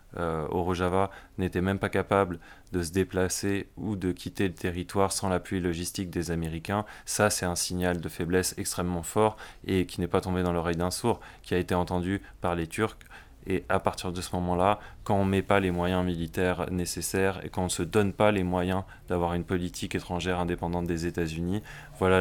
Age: 20-39